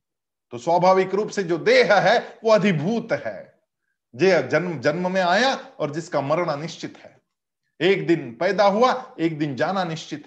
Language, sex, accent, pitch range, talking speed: Hindi, male, native, 165-235 Hz, 165 wpm